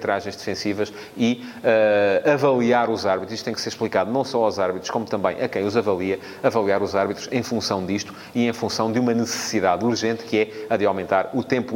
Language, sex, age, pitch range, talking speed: Portuguese, male, 30-49, 110-135 Hz, 210 wpm